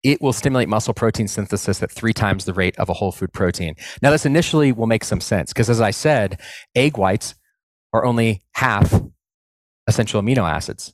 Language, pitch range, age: English, 95-120 Hz, 30-49